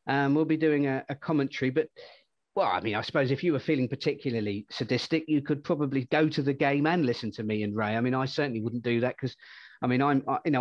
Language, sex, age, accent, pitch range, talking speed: English, male, 40-59, British, 125-145 Hz, 255 wpm